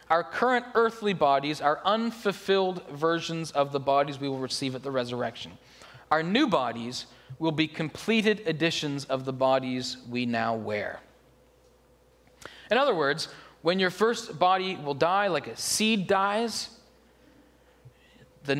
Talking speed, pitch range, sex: 140 wpm, 130-170 Hz, male